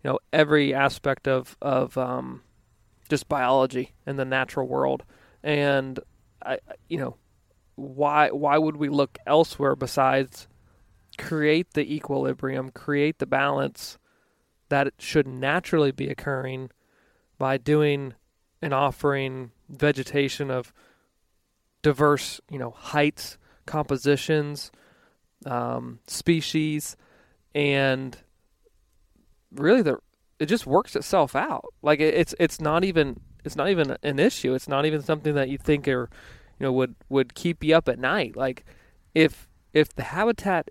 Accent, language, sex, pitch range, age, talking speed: American, English, male, 130-150 Hz, 30-49, 130 wpm